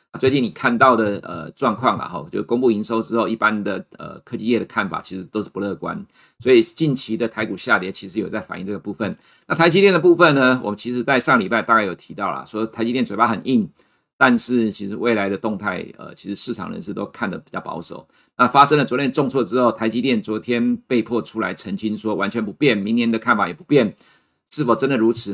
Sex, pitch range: male, 105-125 Hz